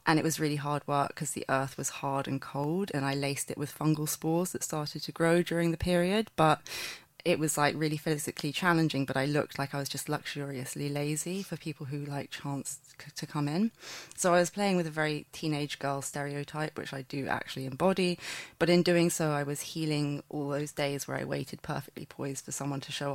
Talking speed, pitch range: 225 wpm, 140-170 Hz